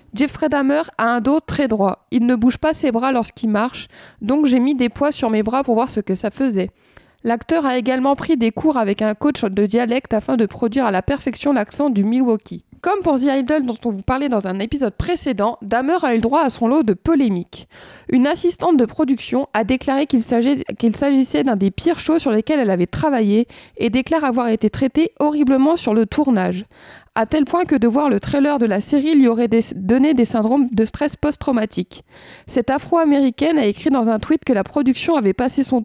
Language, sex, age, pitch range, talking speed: French, female, 20-39, 225-285 Hz, 220 wpm